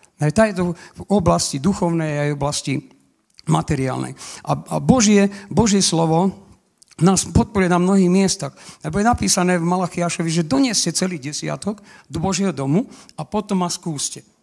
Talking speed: 140 wpm